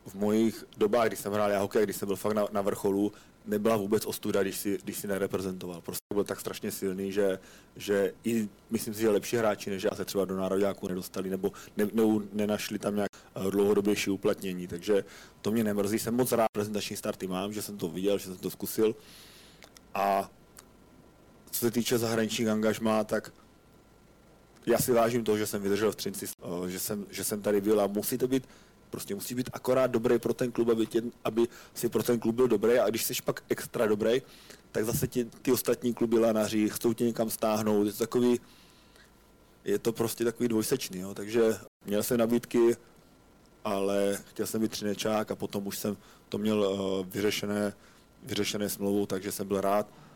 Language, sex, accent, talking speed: Czech, male, native, 190 wpm